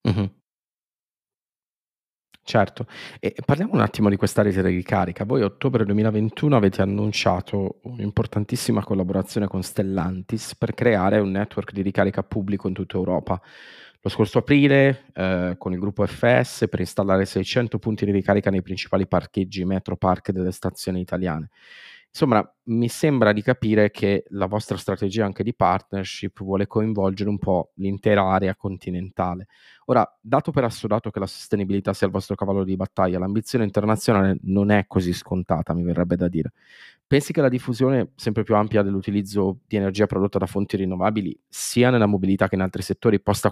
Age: 30-49